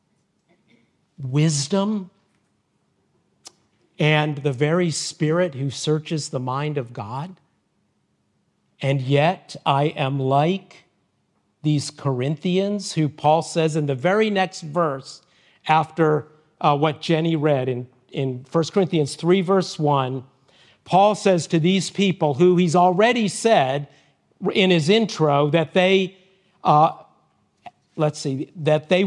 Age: 50-69